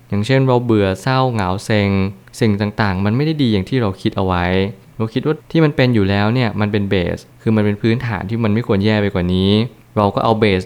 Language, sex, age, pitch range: Thai, male, 20-39, 100-115 Hz